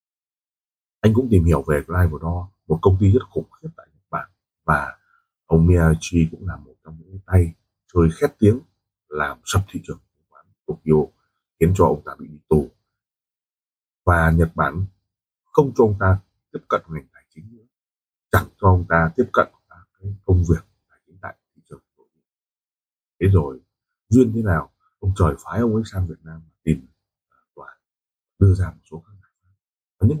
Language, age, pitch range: Vietnamese, 30-49, 85-105 Hz